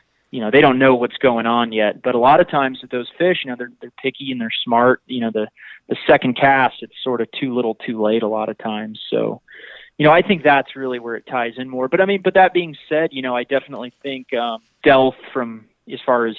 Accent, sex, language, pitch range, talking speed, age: American, male, English, 110-130 Hz, 265 wpm, 20-39